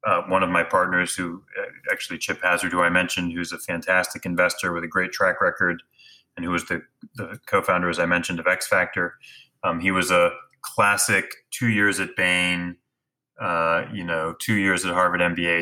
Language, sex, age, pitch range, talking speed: English, male, 30-49, 85-100 Hz, 185 wpm